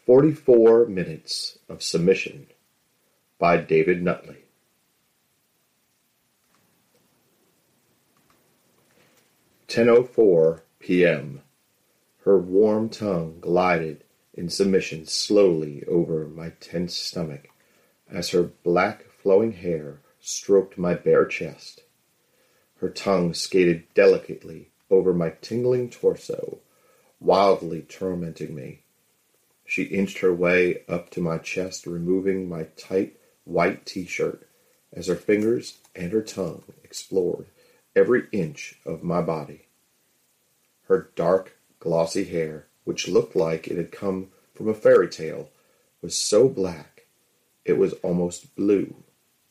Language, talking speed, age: English, 105 wpm, 40-59